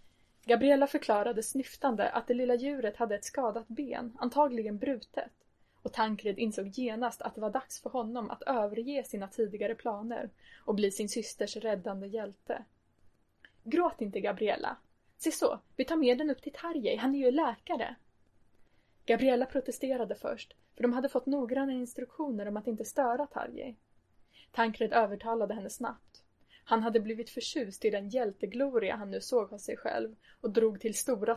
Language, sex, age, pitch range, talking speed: Swedish, female, 20-39, 210-255 Hz, 165 wpm